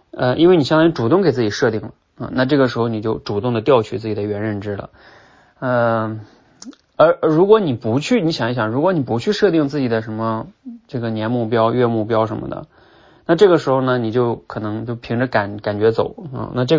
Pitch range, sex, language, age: 110-130 Hz, male, Chinese, 20-39